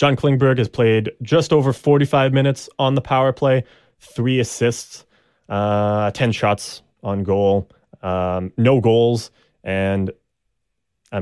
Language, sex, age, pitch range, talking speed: English, male, 20-39, 100-125 Hz, 130 wpm